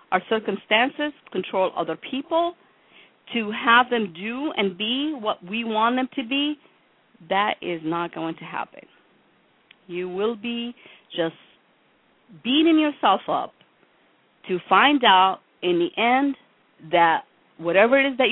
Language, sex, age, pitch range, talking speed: English, female, 40-59, 185-265 Hz, 135 wpm